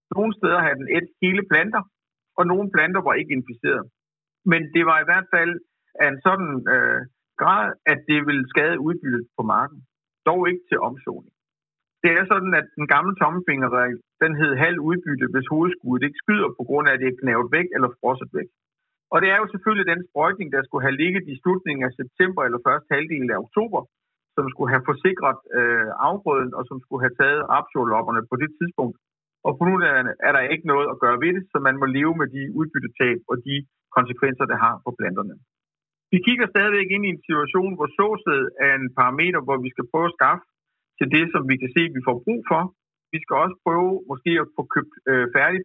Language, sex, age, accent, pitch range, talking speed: Danish, male, 60-79, native, 140-185 Hz, 210 wpm